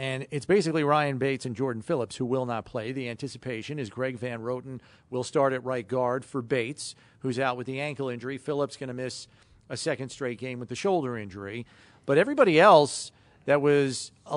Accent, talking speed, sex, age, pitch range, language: American, 205 wpm, male, 40-59, 120-160 Hz, English